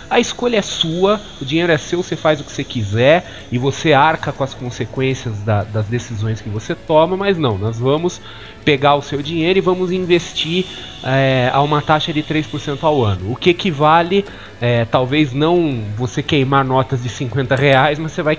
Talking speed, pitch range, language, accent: 185 wpm, 115-160 Hz, Portuguese, Brazilian